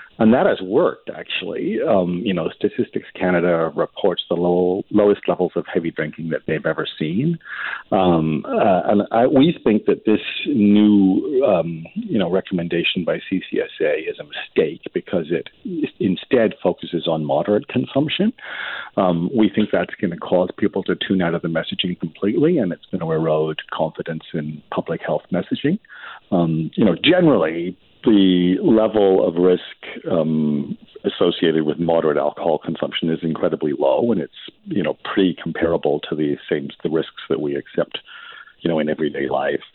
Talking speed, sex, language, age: 160 wpm, male, English, 50-69